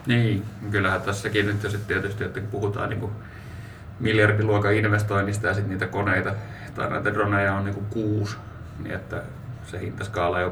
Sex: male